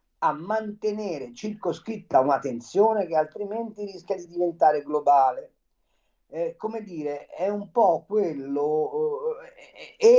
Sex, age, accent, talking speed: male, 50-69, native, 110 wpm